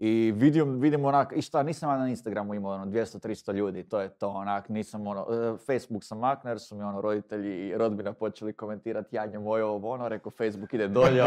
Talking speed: 195 wpm